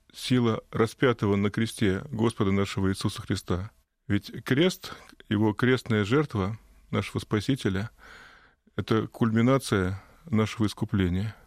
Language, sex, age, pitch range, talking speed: Russian, male, 20-39, 100-115 Hz, 100 wpm